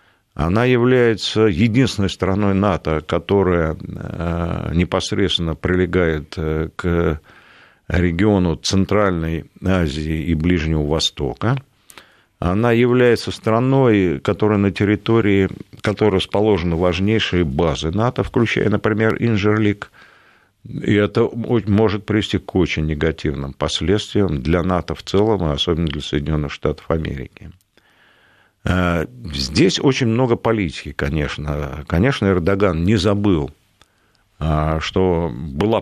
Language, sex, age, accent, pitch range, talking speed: Russian, male, 50-69, native, 80-105 Hz, 95 wpm